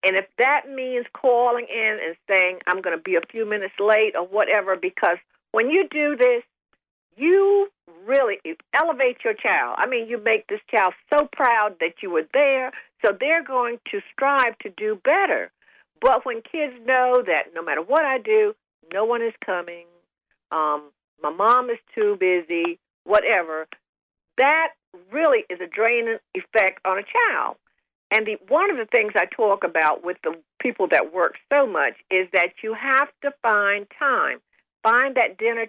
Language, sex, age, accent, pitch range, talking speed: English, female, 60-79, American, 190-300 Hz, 175 wpm